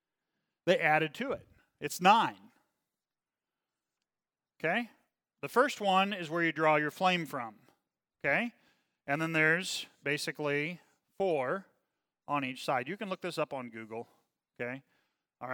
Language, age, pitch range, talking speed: English, 40-59, 140-190 Hz, 135 wpm